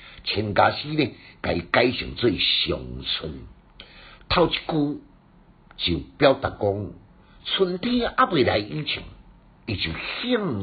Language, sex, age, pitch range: Chinese, male, 60-79, 95-155 Hz